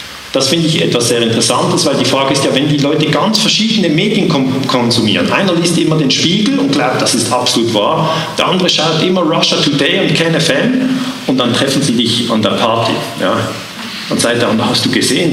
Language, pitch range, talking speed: German, 120-165 Hz, 210 wpm